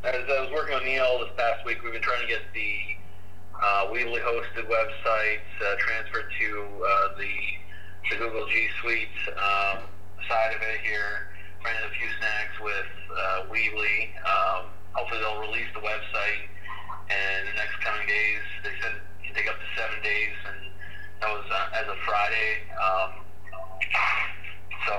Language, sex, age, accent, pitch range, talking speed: English, male, 30-49, American, 90-110 Hz, 165 wpm